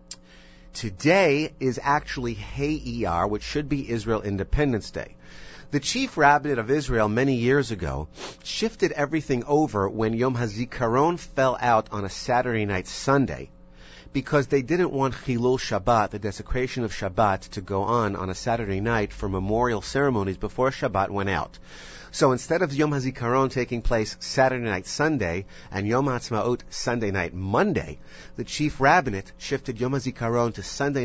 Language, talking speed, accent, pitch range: English, 155 wpm, American, 95-130 Hz